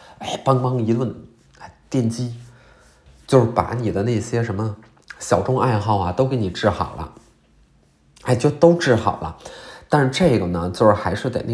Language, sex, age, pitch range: Chinese, male, 20-39, 100-130 Hz